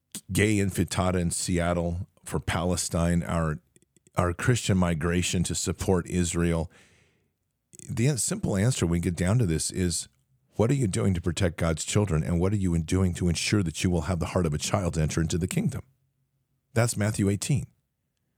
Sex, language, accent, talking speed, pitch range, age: male, English, American, 180 wpm, 85-115 Hz, 50-69